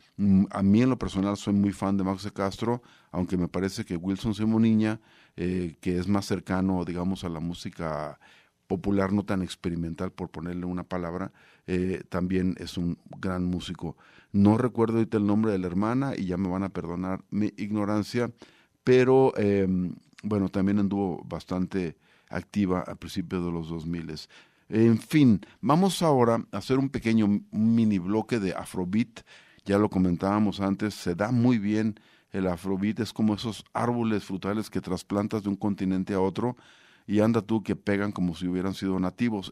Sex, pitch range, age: male, 90-110 Hz, 50-69